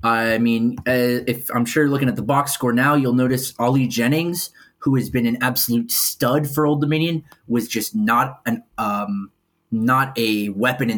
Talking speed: 180 wpm